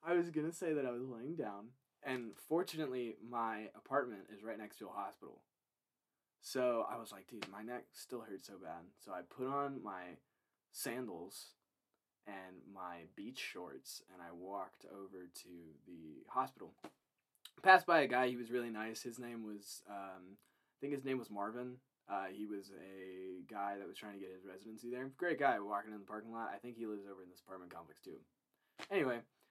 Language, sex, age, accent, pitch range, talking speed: English, male, 20-39, American, 100-130 Hz, 195 wpm